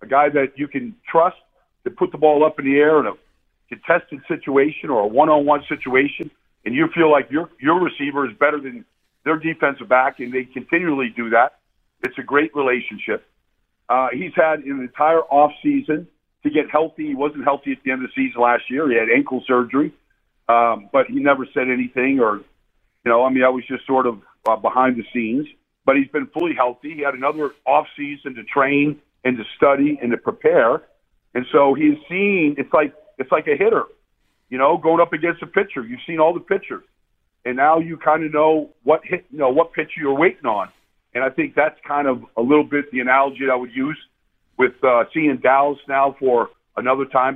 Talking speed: 210 wpm